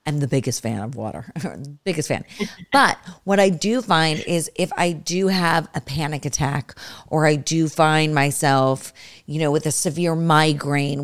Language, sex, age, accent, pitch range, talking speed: English, female, 40-59, American, 140-185 Hz, 175 wpm